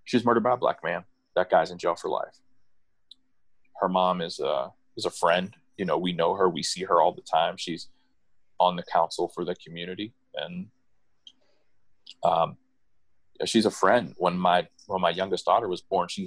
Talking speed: 190 wpm